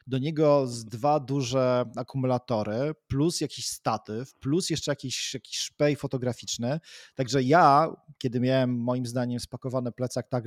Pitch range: 120-140 Hz